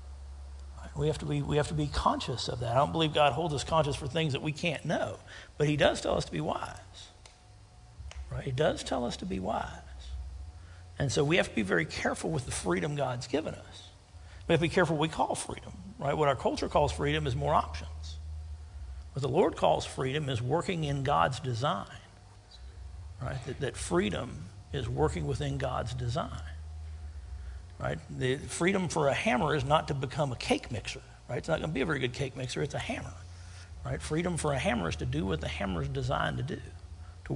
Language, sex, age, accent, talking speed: English, male, 50-69, American, 215 wpm